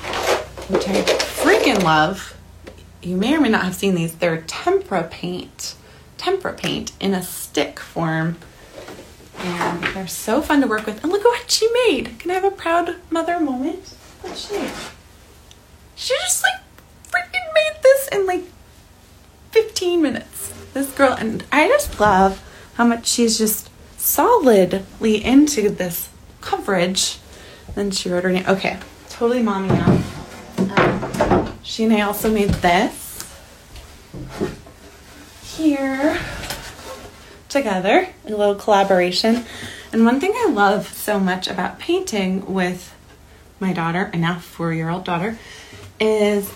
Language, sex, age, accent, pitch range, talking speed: English, female, 20-39, American, 185-285 Hz, 135 wpm